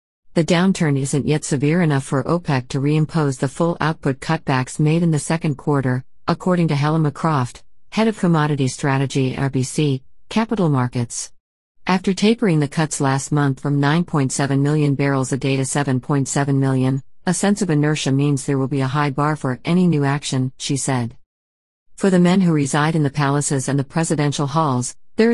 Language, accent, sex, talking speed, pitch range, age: English, American, female, 180 wpm, 135-165 Hz, 50-69